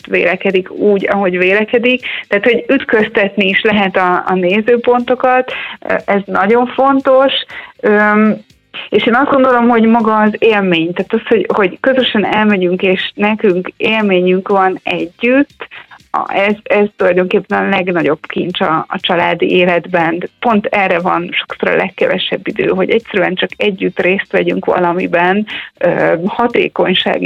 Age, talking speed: 30-49, 135 wpm